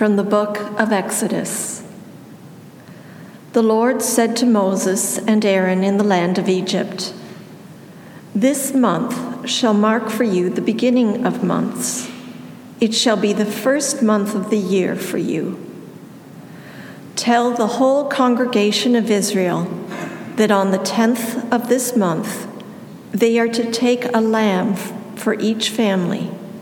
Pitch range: 195-235 Hz